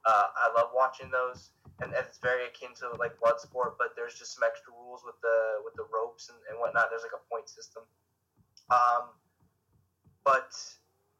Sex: male